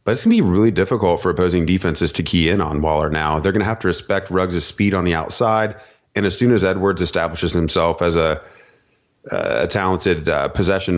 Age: 30-49